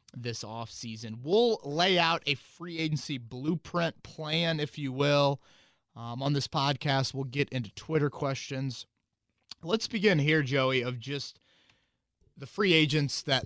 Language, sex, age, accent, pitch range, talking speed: English, male, 30-49, American, 120-160 Hz, 145 wpm